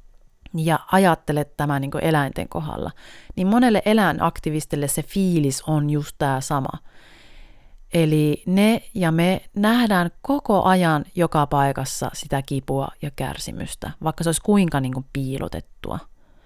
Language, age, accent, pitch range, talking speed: Finnish, 30-49, native, 145-200 Hz, 130 wpm